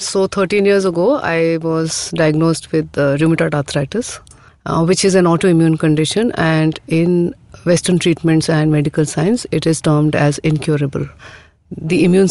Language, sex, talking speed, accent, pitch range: English, female, 150 wpm, Indian, 155-185 Hz